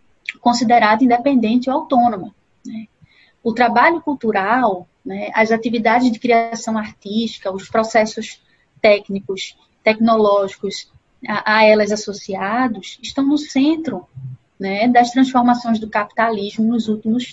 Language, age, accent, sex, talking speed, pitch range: Portuguese, 20-39, Brazilian, female, 110 wpm, 210-250 Hz